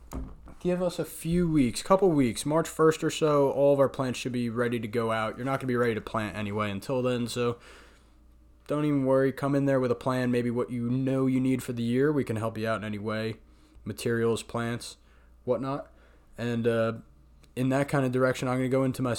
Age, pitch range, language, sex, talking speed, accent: 20-39, 110-130 Hz, English, male, 235 wpm, American